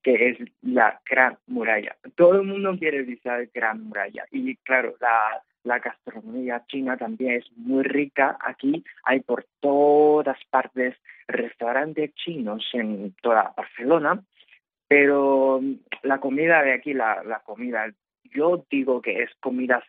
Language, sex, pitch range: Chinese, male, 120-150 Hz